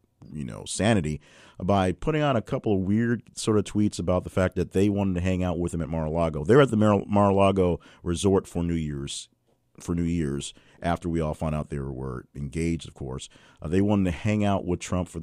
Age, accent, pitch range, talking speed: 40-59, American, 80-100 Hz, 225 wpm